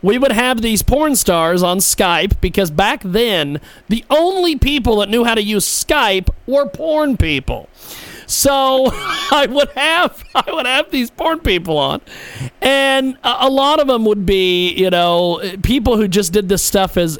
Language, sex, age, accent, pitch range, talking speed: English, male, 40-59, American, 175-240 Hz, 175 wpm